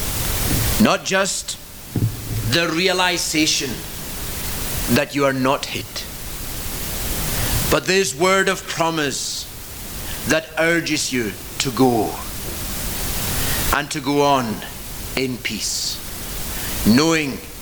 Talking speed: 90 wpm